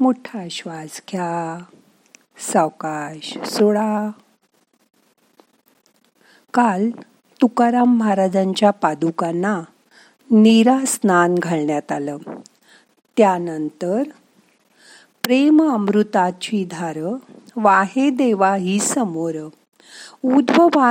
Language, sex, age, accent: Marathi, female, 50-69, native